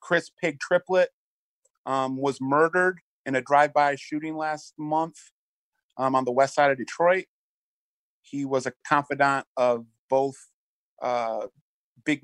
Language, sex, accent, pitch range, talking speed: English, male, American, 125-160 Hz, 130 wpm